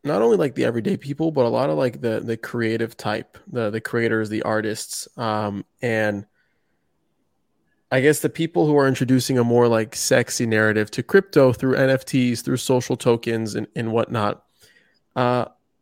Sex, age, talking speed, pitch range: male, 20-39, 170 wpm, 110-130 Hz